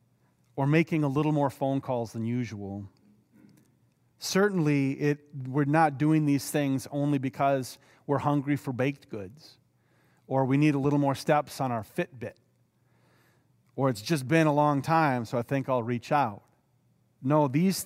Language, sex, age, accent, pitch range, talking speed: English, male, 40-59, American, 120-150 Hz, 160 wpm